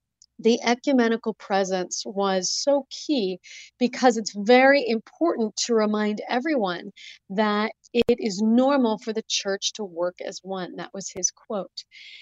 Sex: female